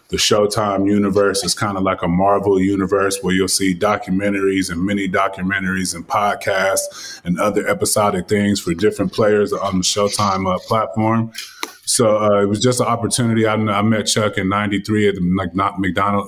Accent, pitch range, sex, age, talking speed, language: American, 95-105 Hz, male, 30-49, 175 wpm, English